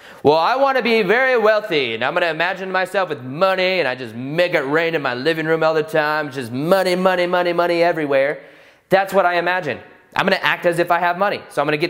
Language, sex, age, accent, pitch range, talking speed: English, male, 20-39, American, 165-235 Hz, 240 wpm